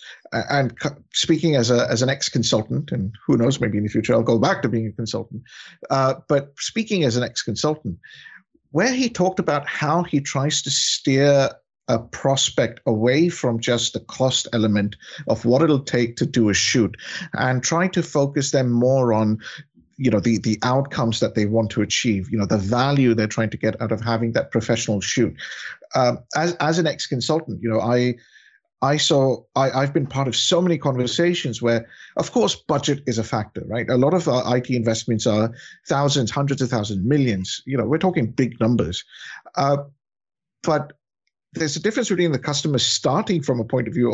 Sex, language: male, English